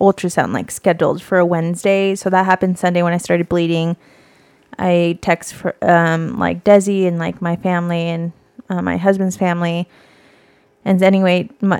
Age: 20-39